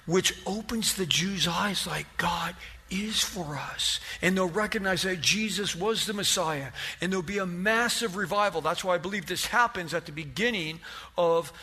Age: 50-69